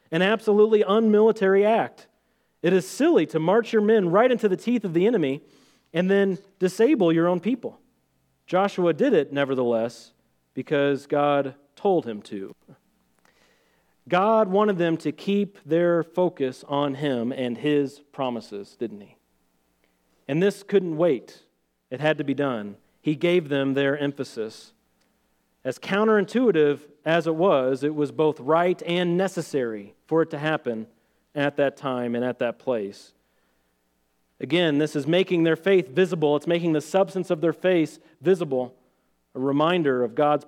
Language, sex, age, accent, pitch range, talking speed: English, male, 40-59, American, 135-190 Hz, 150 wpm